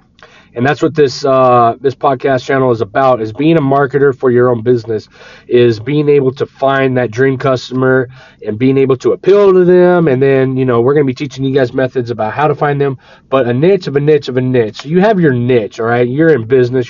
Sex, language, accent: male, English, American